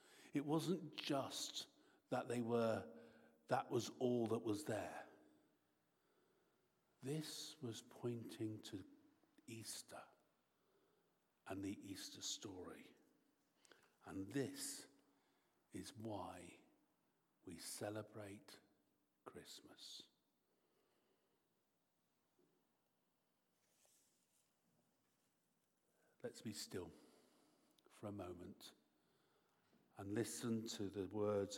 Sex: male